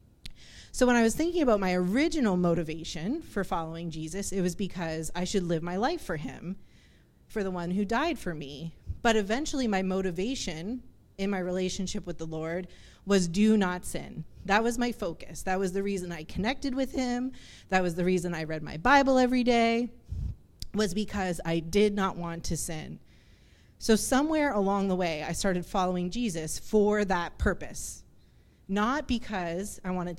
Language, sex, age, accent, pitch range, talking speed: English, female, 30-49, American, 180-230 Hz, 175 wpm